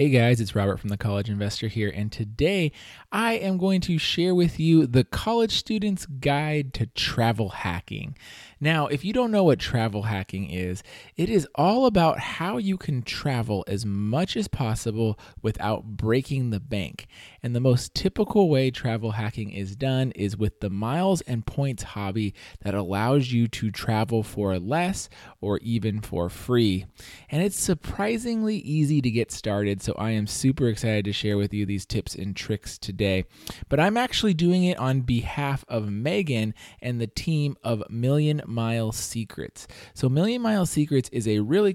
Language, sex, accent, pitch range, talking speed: English, male, American, 105-155 Hz, 175 wpm